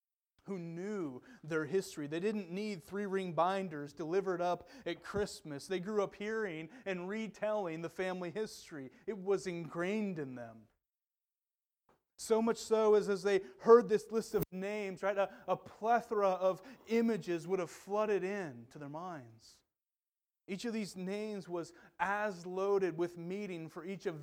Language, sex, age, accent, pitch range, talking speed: English, male, 30-49, American, 165-210 Hz, 155 wpm